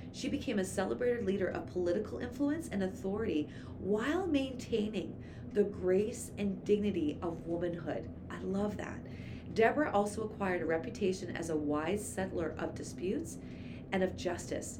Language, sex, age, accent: English, female, 30-49, American